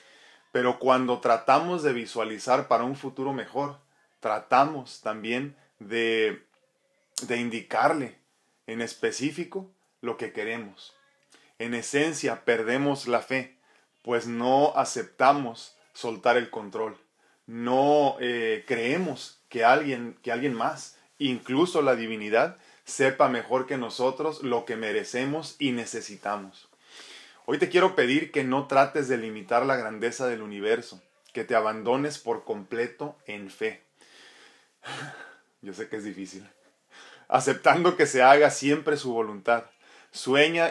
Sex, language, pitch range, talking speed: male, Spanish, 115-140 Hz, 120 wpm